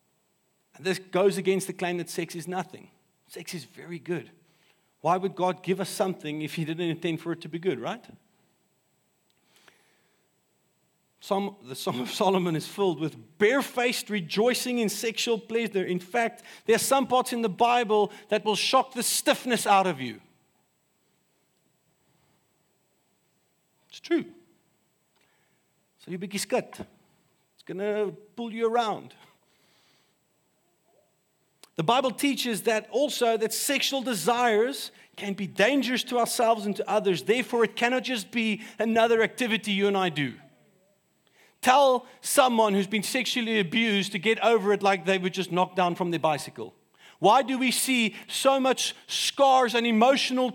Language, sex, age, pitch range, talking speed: English, male, 50-69, 190-240 Hz, 145 wpm